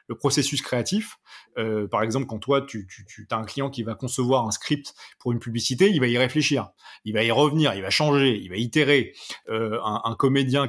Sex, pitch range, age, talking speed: male, 110-145 Hz, 30-49, 225 wpm